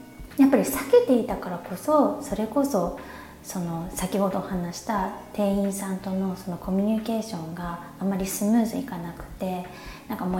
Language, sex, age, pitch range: Japanese, female, 20-39, 180-265 Hz